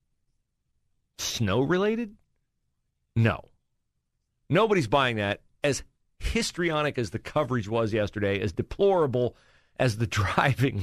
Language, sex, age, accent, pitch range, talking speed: English, male, 40-59, American, 105-155 Hz, 95 wpm